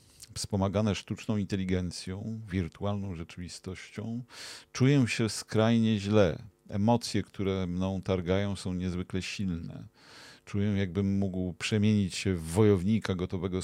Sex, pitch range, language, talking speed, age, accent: male, 95-110 Hz, Polish, 105 wpm, 40-59, native